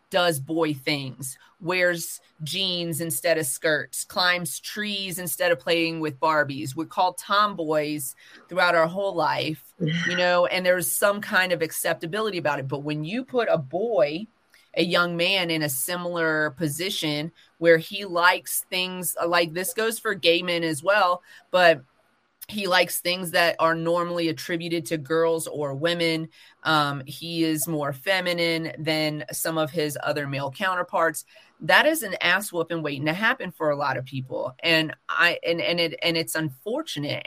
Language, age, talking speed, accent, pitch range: English, 30-49, 165 wpm, American, 150-175 Hz